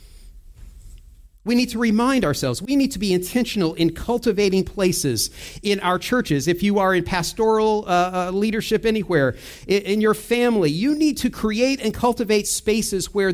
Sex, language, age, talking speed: male, English, 40-59, 165 wpm